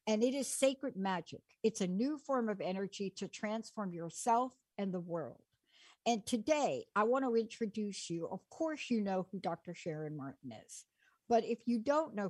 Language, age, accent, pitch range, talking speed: English, 60-79, American, 190-260 Hz, 185 wpm